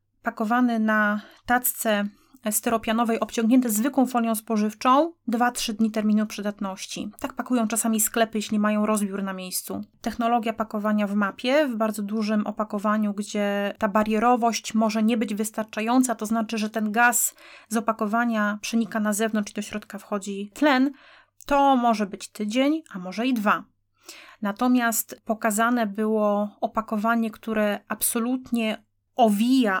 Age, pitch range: 30-49, 210-240 Hz